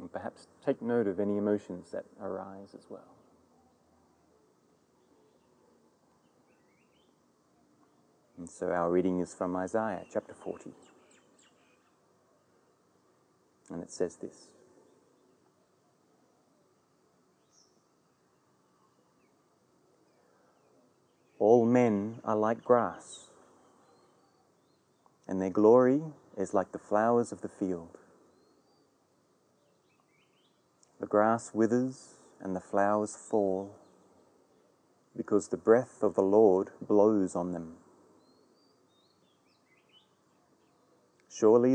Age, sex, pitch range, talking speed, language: 30-49, male, 85-115 Hz, 80 wpm, English